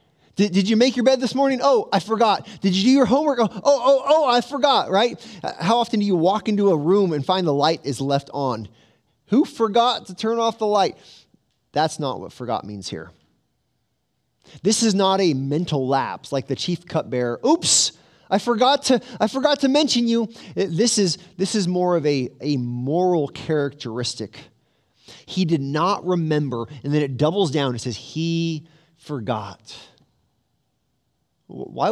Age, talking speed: 30-49, 175 wpm